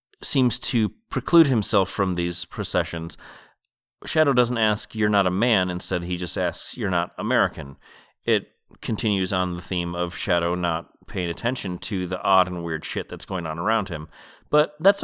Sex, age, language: male, 30-49, English